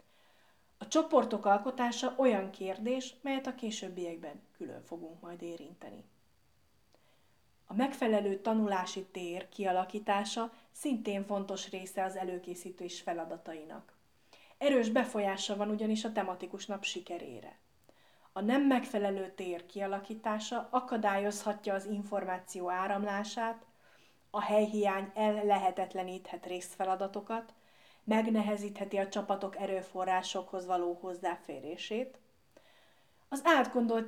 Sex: female